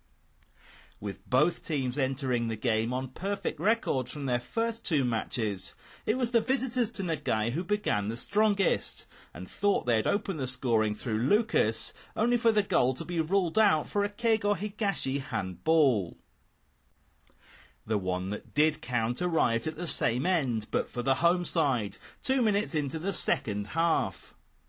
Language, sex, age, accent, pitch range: Japanese, male, 30-49, British, 115-195 Hz